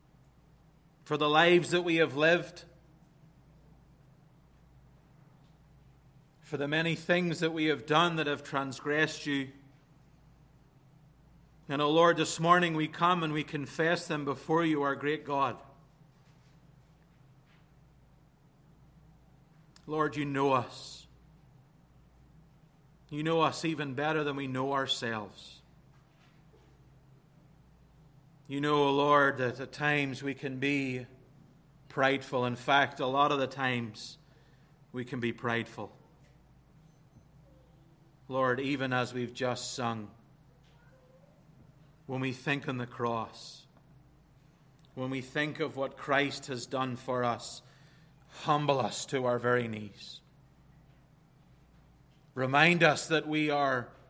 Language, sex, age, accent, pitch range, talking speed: English, male, 40-59, American, 135-155 Hz, 115 wpm